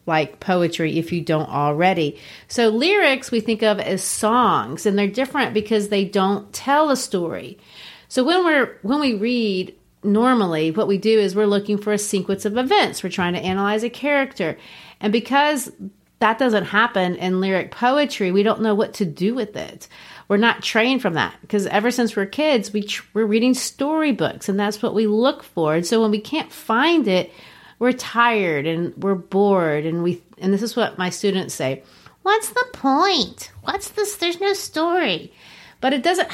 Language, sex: English, female